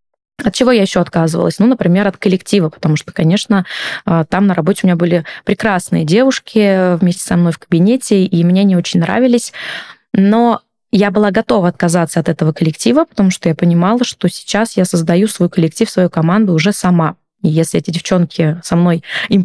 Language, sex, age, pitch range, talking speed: Russian, female, 20-39, 175-220 Hz, 180 wpm